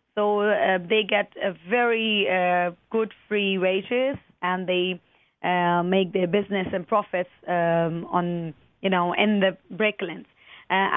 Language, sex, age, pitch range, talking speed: English, female, 30-49, 185-225 Hz, 140 wpm